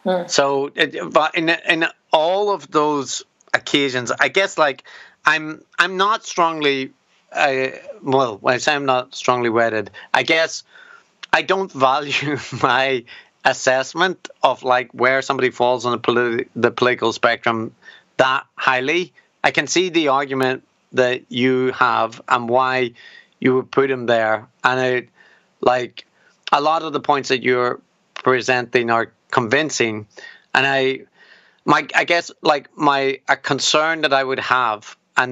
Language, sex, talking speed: English, male, 145 wpm